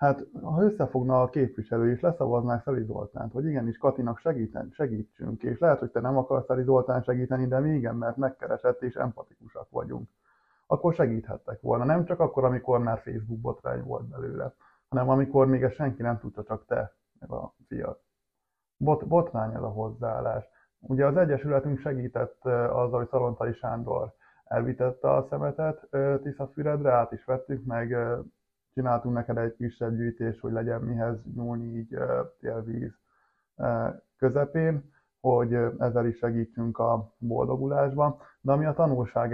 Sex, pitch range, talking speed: male, 115-135 Hz, 150 wpm